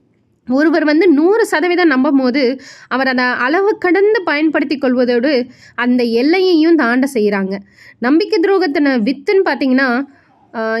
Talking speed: 110 wpm